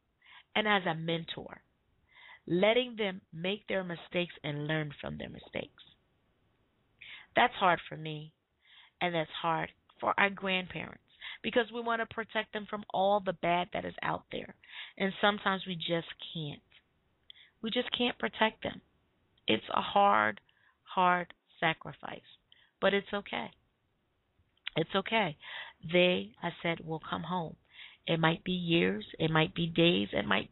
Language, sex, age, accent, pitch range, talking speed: English, female, 40-59, American, 160-205 Hz, 145 wpm